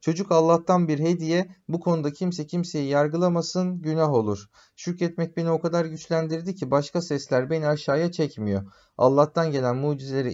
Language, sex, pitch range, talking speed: Turkish, male, 135-170 Hz, 145 wpm